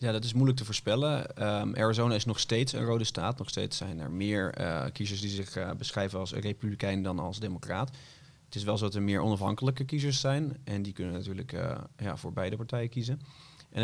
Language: Dutch